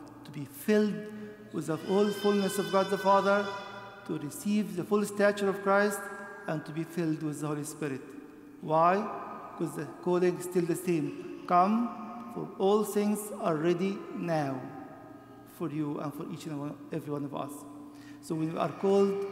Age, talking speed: 50-69, 170 wpm